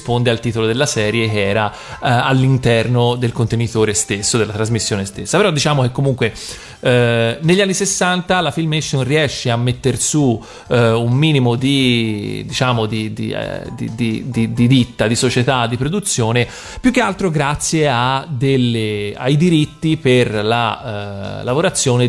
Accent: native